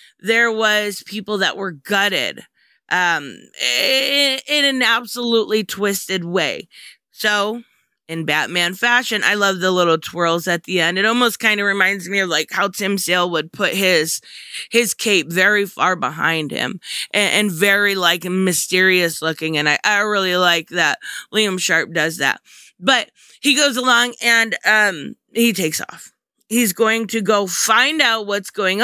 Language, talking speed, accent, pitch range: English, 160 wpm, American, 190-260 Hz